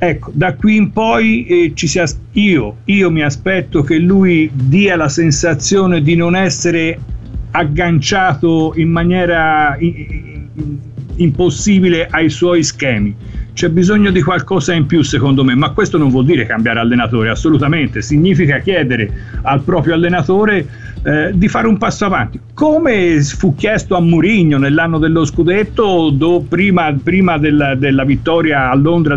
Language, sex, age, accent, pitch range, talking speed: Italian, male, 50-69, native, 130-175 Hz, 140 wpm